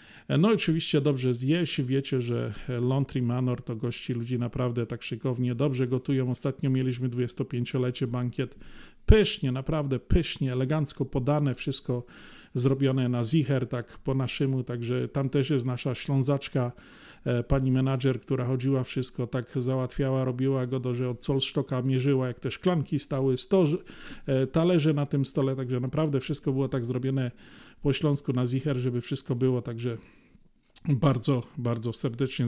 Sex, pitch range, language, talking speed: male, 125-145 Hz, Polish, 145 wpm